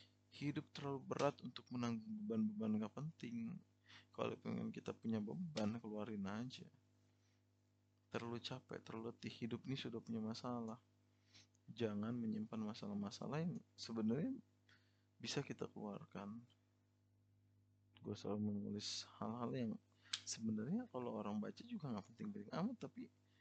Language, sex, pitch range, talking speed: Indonesian, male, 105-120 Hz, 120 wpm